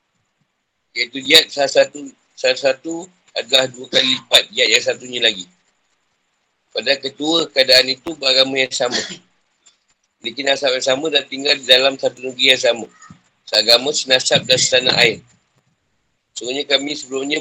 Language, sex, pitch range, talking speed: Malay, male, 120-150 Hz, 130 wpm